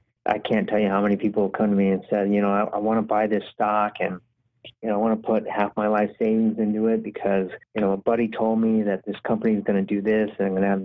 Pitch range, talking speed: 105-130 Hz, 295 wpm